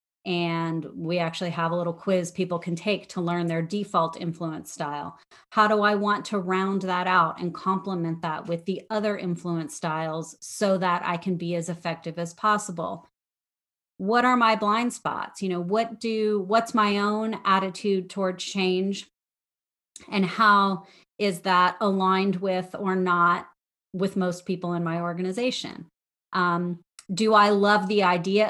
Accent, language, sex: American, English, female